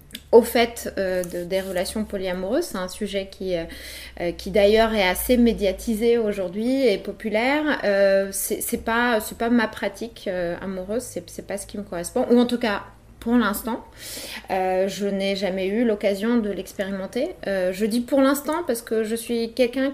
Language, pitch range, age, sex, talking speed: French, 195-245 Hz, 20-39, female, 185 wpm